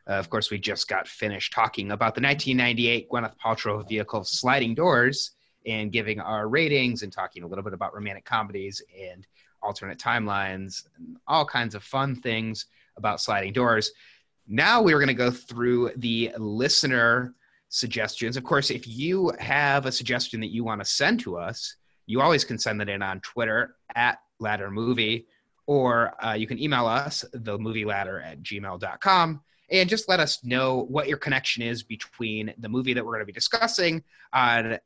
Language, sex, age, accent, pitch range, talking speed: English, male, 30-49, American, 110-135 Hz, 175 wpm